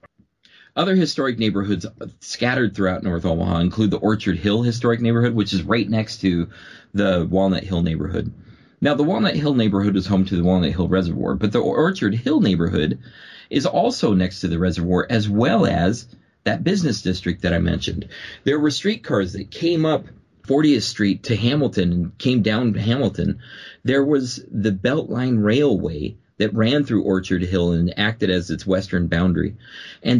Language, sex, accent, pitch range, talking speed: English, male, American, 95-115 Hz, 170 wpm